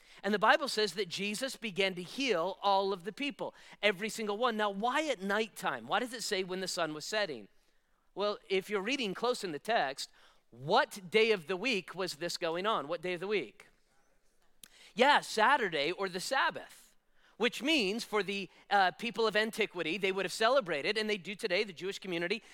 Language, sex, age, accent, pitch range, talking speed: English, male, 40-59, American, 195-250 Hz, 200 wpm